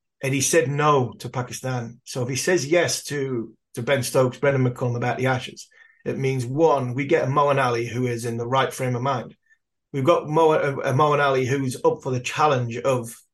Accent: British